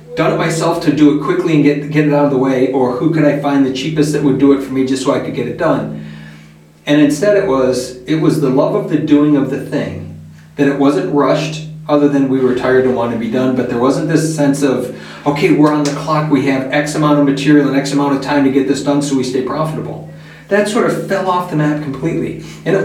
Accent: American